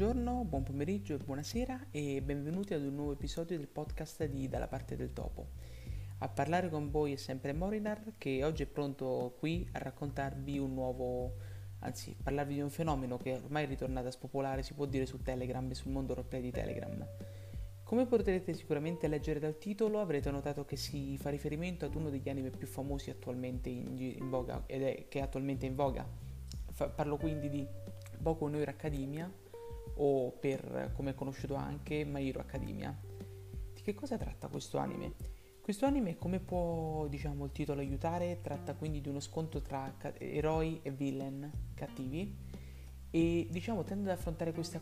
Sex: female